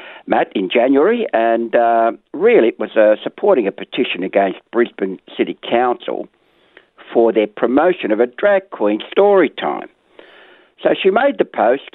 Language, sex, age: English, male, 60-79